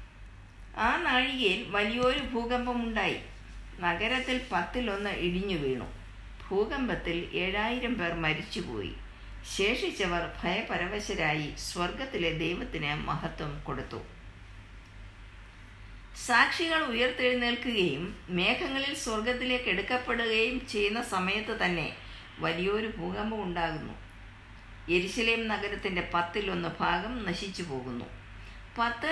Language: Malayalam